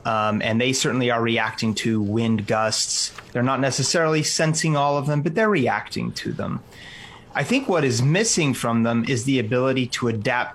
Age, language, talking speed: 30-49, English, 190 wpm